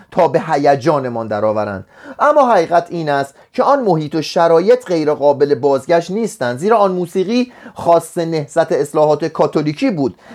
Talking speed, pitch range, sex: 140 wpm, 145-220 Hz, male